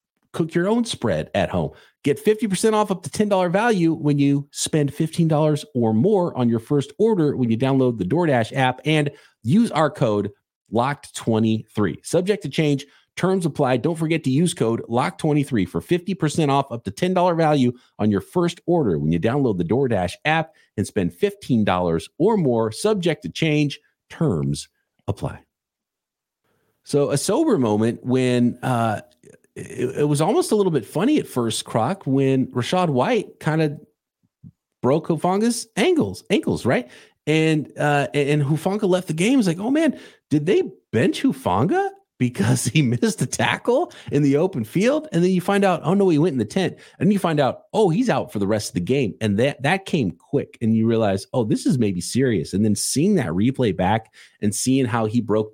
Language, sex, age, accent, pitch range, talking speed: English, male, 50-69, American, 115-175 Hz, 190 wpm